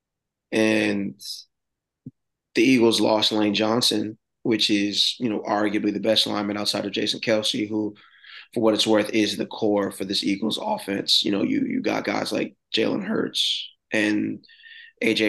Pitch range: 105-110 Hz